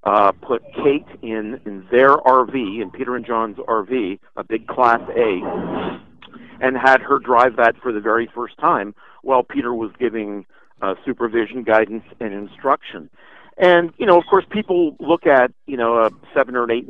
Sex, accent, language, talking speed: male, American, English, 175 wpm